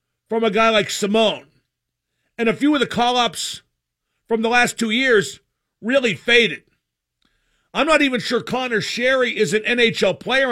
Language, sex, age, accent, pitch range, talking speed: English, male, 50-69, American, 195-265 Hz, 160 wpm